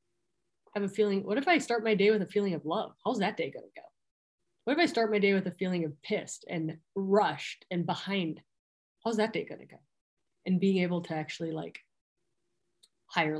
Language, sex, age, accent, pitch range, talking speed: English, female, 20-39, American, 165-195 Hz, 220 wpm